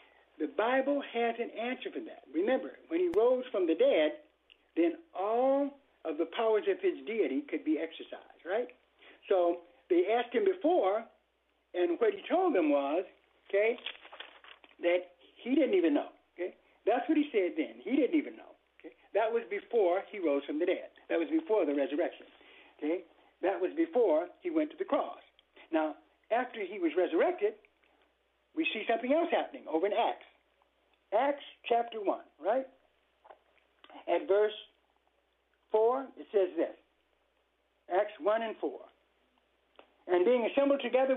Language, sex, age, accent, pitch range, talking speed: English, male, 60-79, American, 220-345 Hz, 155 wpm